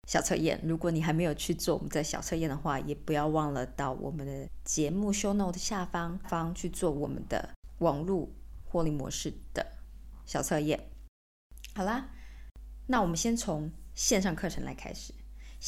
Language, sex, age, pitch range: Chinese, female, 20-39, 150-190 Hz